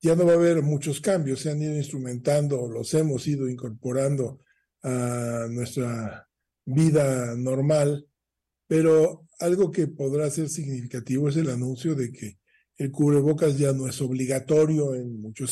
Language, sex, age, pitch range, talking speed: Spanish, male, 50-69, 130-155 Hz, 145 wpm